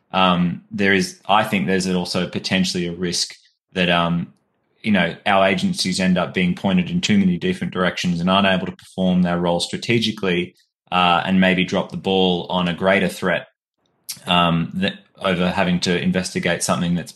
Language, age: English, 20-39